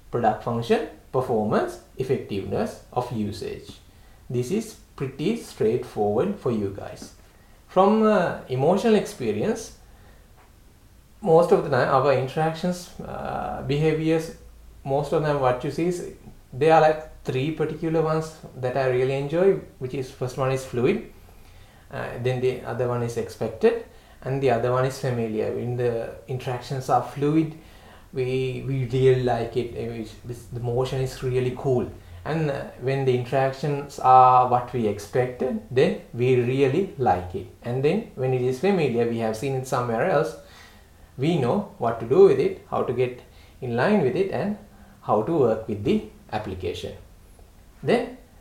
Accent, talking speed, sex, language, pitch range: Indian, 150 wpm, male, English, 120-155 Hz